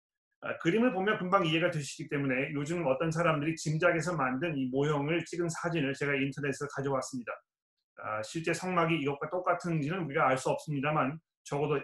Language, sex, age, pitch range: Korean, male, 30-49, 140-175 Hz